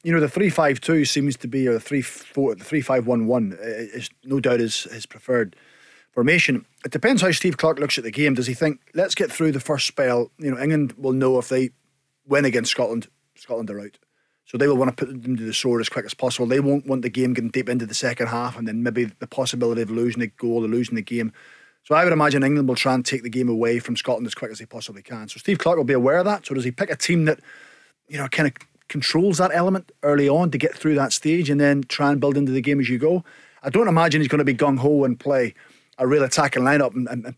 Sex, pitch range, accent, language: male, 125-155 Hz, British, English